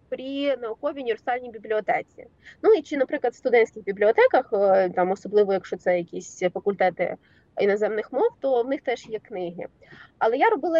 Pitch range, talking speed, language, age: 225-310 Hz, 155 wpm, Ukrainian, 20-39